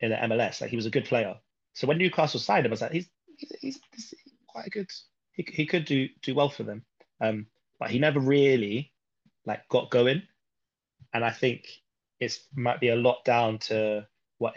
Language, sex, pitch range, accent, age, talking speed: English, male, 110-135 Hz, British, 20-39, 200 wpm